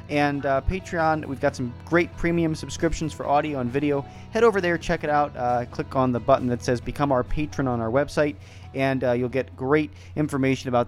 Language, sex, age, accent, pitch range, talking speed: English, male, 30-49, American, 120-150 Hz, 215 wpm